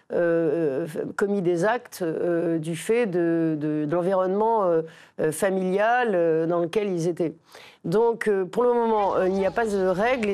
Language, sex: French, female